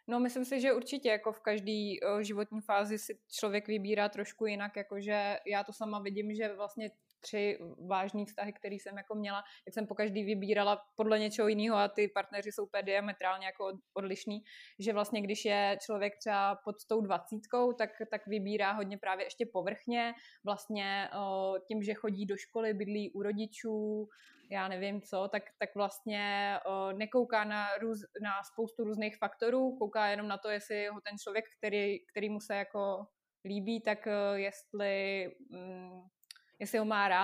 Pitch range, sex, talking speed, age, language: 205-225 Hz, female, 165 wpm, 20-39, Slovak